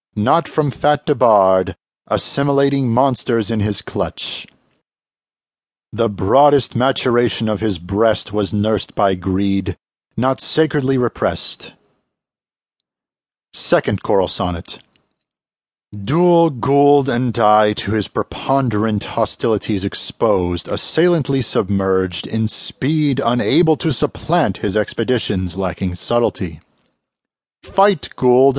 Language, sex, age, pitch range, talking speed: English, male, 40-59, 100-145 Hz, 100 wpm